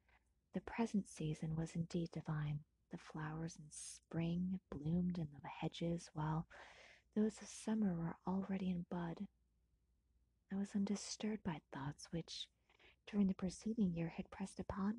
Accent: American